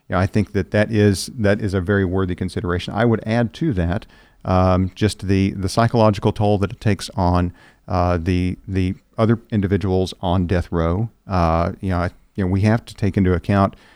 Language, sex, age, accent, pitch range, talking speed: English, male, 50-69, American, 90-105 Hz, 205 wpm